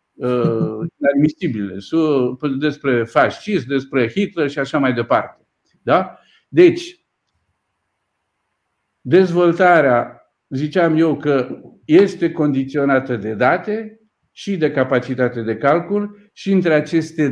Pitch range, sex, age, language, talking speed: 135-185 Hz, male, 50-69, Romanian, 95 wpm